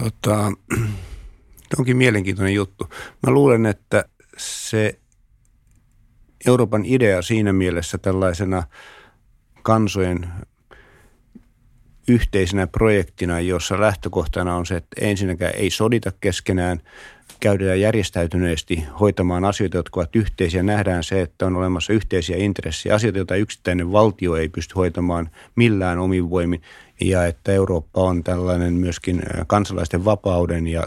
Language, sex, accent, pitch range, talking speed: Finnish, male, native, 90-105 Hz, 115 wpm